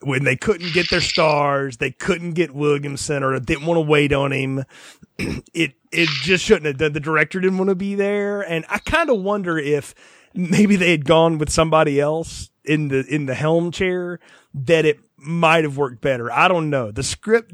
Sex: male